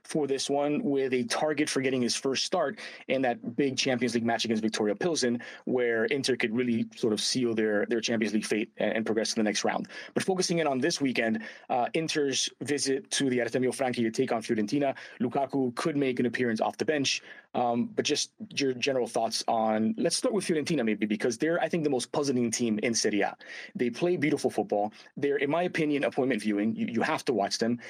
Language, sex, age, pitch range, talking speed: English, male, 30-49, 115-145 Hz, 220 wpm